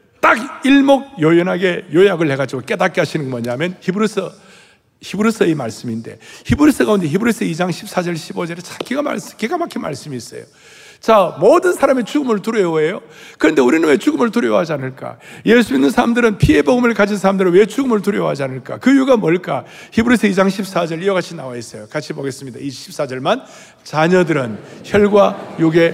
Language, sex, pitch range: Korean, male, 160-220 Hz